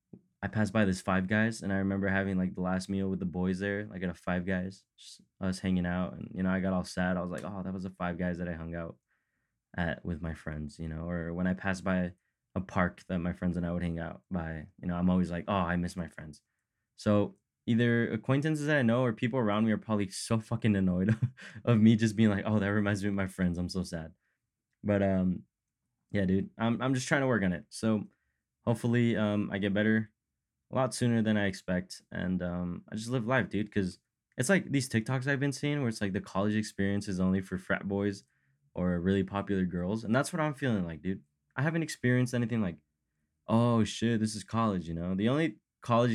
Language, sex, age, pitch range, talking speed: English, male, 20-39, 90-115 Hz, 240 wpm